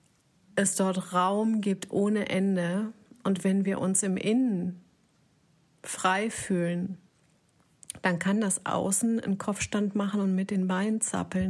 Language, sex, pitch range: German, female, 175-195 Hz